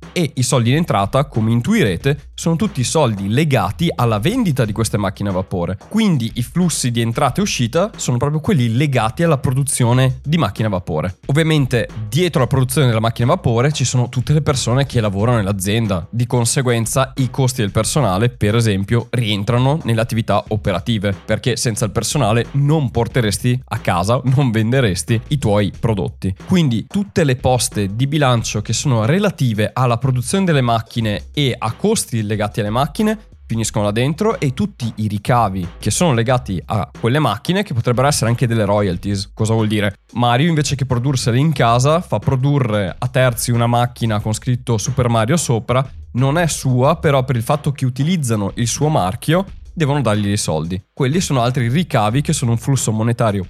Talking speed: 180 wpm